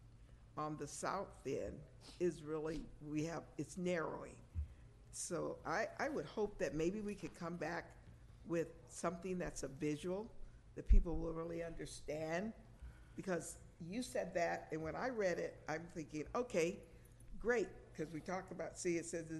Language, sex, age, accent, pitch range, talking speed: English, female, 50-69, American, 150-185 Hz, 160 wpm